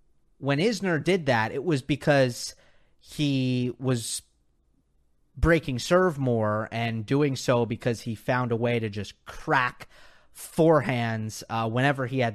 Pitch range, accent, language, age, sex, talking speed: 120-155 Hz, American, English, 30-49, male, 135 wpm